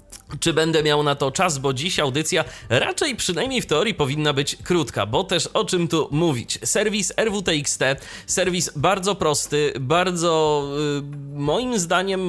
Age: 30-49